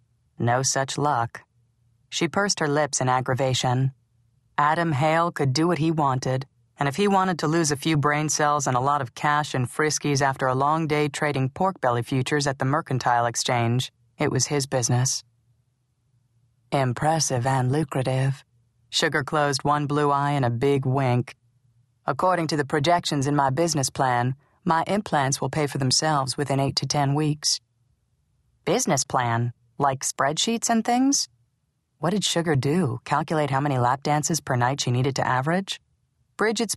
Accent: American